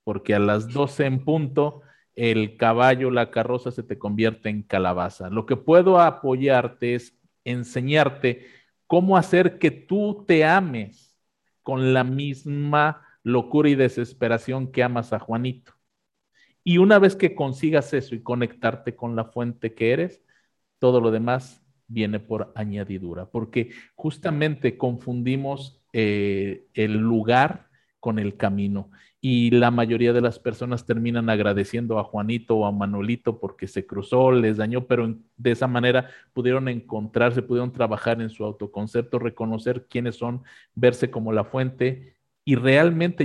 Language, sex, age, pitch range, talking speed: Spanish, male, 50-69, 115-135 Hz, 145 wpm